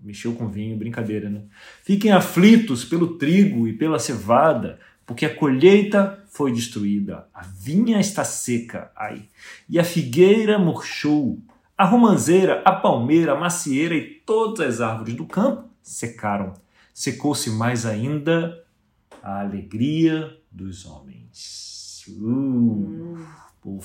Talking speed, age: 120 wpm, 40-59